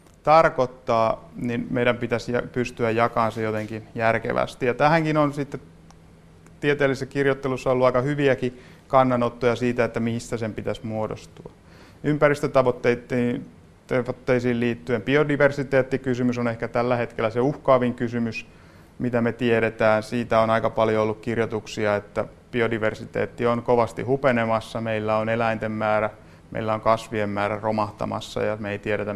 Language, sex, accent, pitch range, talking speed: Finnish, male, native, 110-125 Hz, 130 wpm